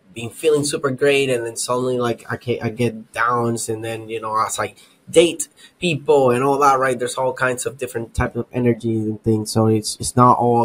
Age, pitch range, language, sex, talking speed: 10-29, 110-125 Hz, English, male, 225 wpm